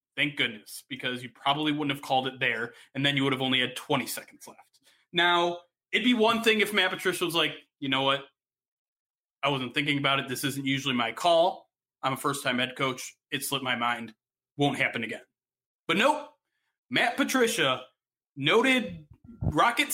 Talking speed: 185 wpm